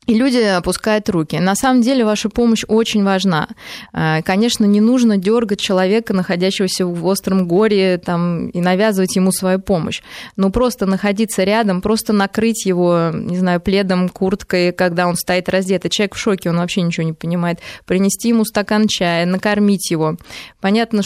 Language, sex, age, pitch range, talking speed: Russian, female, 20-39, 180-210 Hz, 155 wpm